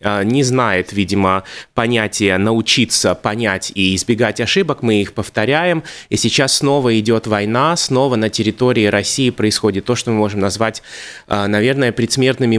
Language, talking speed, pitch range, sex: Russian, 140 wpm, 110-130 Hz, male